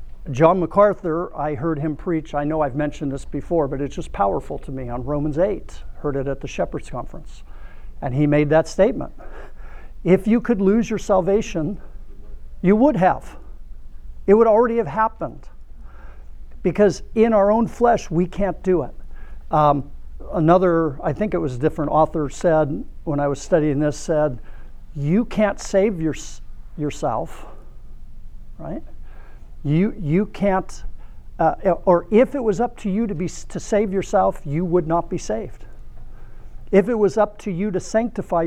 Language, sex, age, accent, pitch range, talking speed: English, male, 60-79, American, 140-195 Hz, 165 wpm